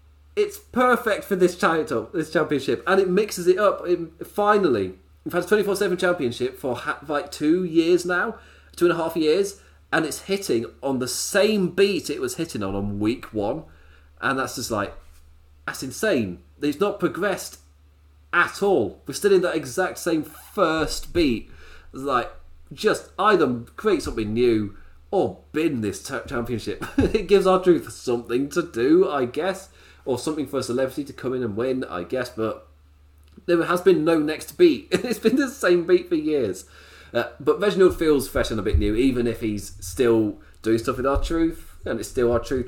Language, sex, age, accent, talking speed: English, male, 30-49, British, 185 wpm